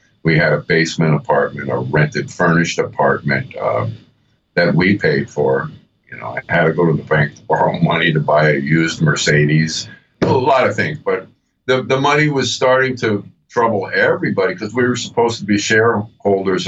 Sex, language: male, English